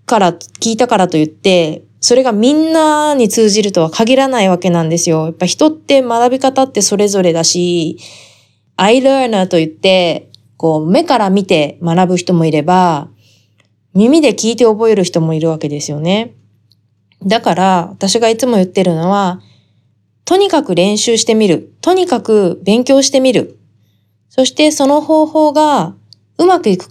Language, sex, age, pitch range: Japanese, female, 20-39, 160-240 Hz